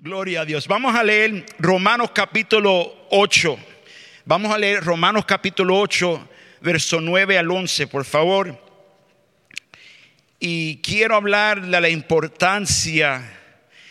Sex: male